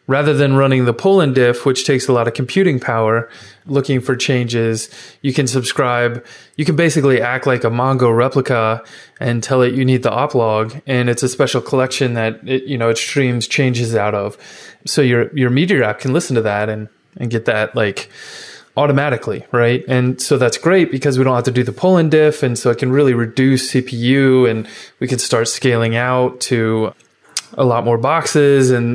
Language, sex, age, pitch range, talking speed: English, male, 20-39, 115-140 Hz, 200 wpm